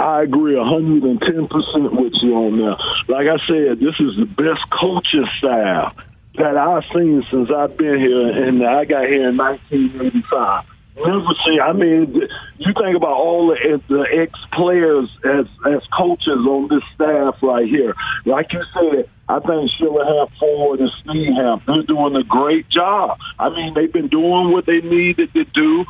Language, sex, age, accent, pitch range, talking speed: English, male, 50-69, American, 140-175 Hz, 160 wpm